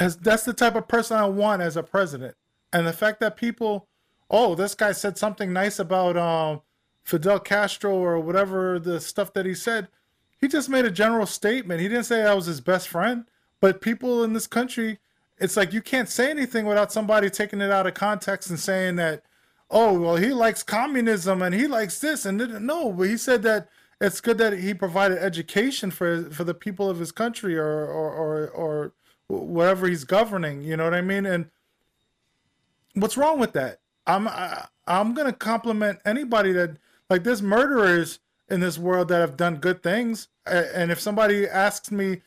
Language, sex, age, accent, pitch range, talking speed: English, male, 20-39, American, 175-220 Hz, 195 wpm